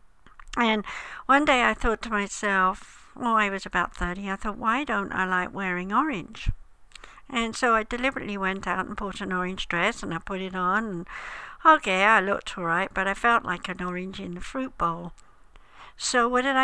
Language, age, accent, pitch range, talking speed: English, 60-79, British, 185-245 Hz, 195 wpm